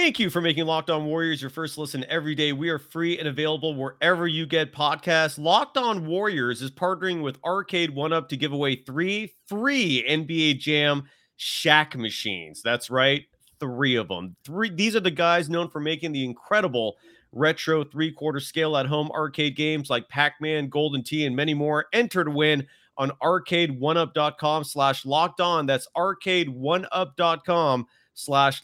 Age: 30-49